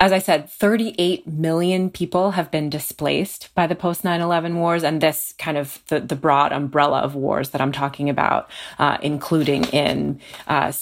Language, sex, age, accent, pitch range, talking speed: English, female, 30-49, American, 155-185 Hz, 170 wpm